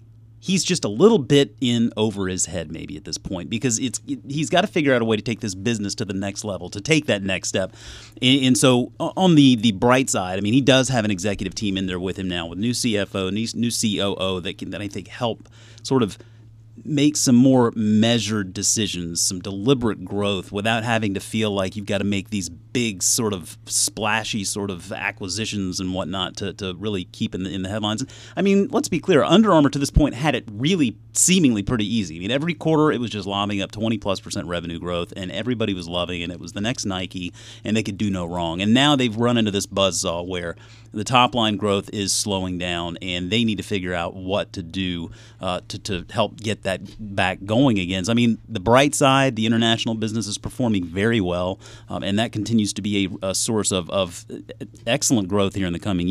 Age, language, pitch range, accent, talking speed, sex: 30-49, English, 95-120 Hz, American, 225 wpm, male